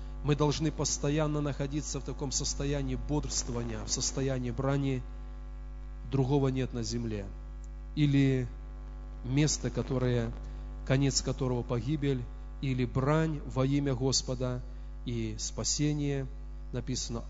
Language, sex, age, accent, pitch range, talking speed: Russian, male, 30-49, native, 115-145 Hz, 100 wpm